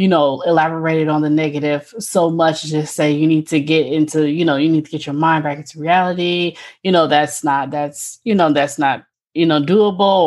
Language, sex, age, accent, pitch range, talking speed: English, female, 20-39, American, 150-175 Hz, 220 wpm